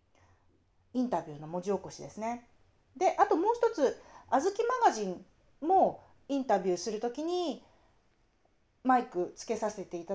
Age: 40-59